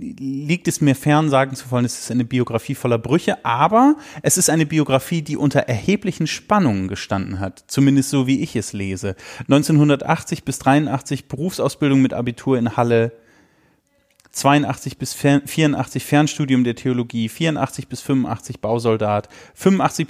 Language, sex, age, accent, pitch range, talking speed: German, male, 30-49, German, 125-160 Hz, 145 wpm